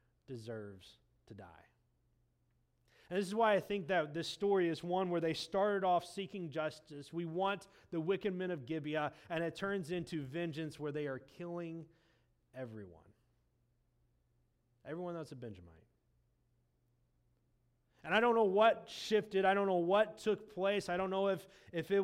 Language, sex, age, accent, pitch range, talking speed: English, male, 30-49, American, 120-185 Hz, 160 wpm